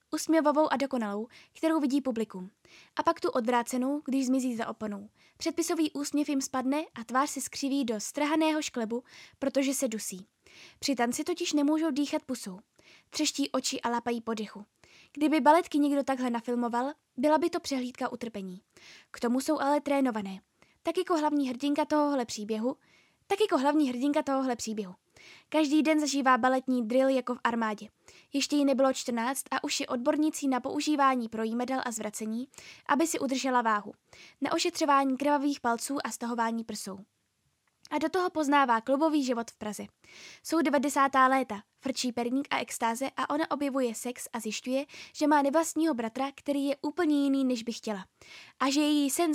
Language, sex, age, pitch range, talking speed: Czech, female, 20-39, 240-295 Hz, 165 wpm